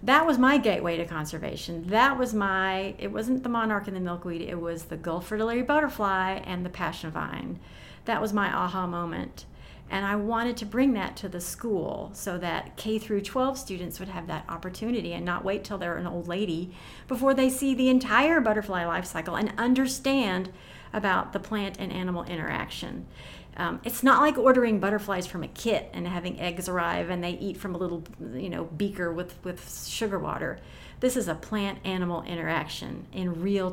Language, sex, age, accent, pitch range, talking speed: English, female, 50-69, American, 175-220 Hz, 190 wpm